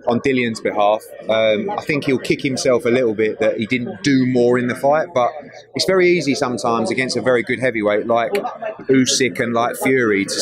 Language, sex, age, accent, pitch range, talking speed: English, male, 30-49, British, 125-140 Hz, 205 wpm